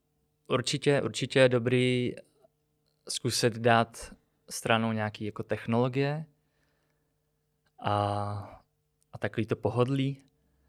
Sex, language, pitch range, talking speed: male, Czech, 105-125 Hz, 80 wpm